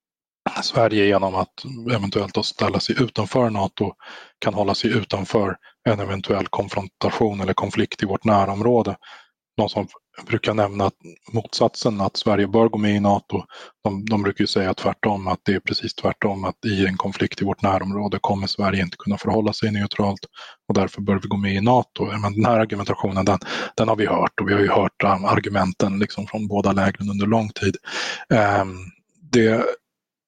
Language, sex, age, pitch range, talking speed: Swedish, male, 20-39, 100-110 Hz, 180 wpm